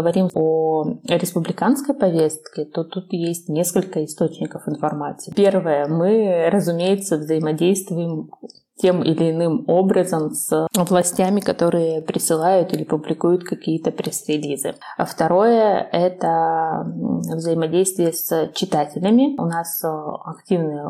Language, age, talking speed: Russian, 20-39, 105 wpm